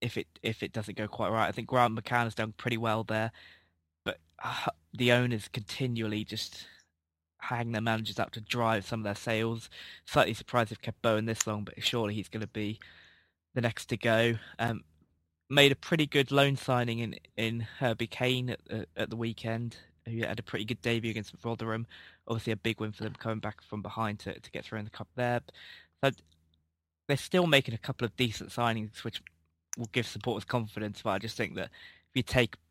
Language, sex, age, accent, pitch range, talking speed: English, male, 20-39, British, 105-120 Hz, 205 wpm